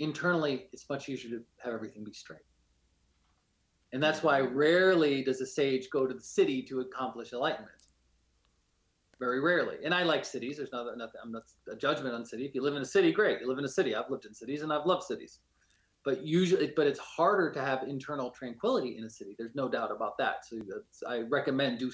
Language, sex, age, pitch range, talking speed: English, male, 30-49, 115-155 Hz, 220 wpm